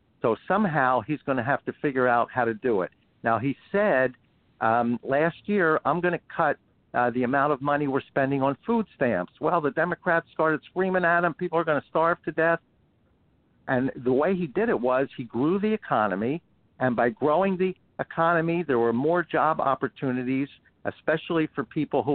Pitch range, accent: 125-160 Hz, American